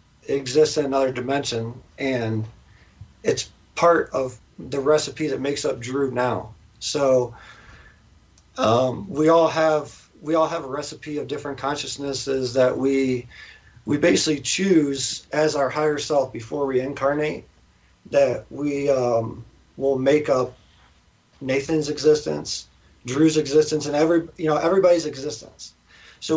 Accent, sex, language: American, male, English